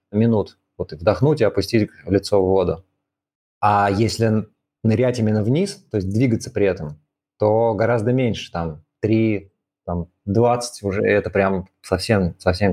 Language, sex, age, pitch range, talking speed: Russian, male, 20-39, 100-120 Hz, 145 wpm